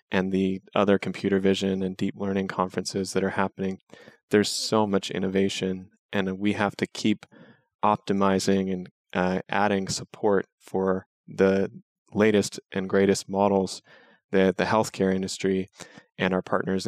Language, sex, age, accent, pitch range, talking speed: English, male, 20-39, American, 95-100 Hz, 140 wpm